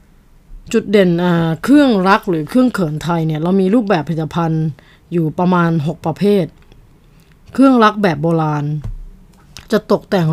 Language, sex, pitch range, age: Thai, female, 165-200 Hz, 20-39